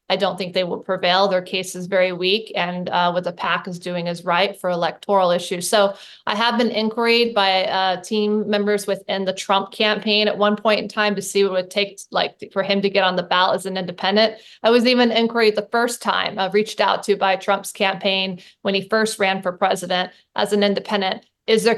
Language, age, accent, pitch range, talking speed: English, 20-39, American, 190-215 Hz, 230 wpm